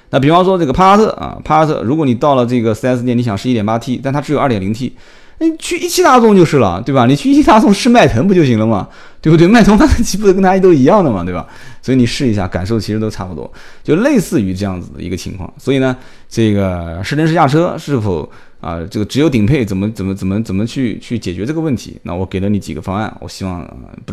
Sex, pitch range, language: male, 95-135 Hz, Chinese